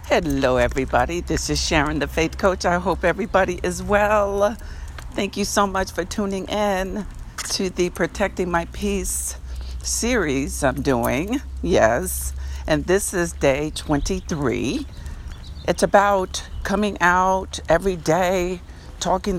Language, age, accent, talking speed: English, 60-79, American, 125 wpm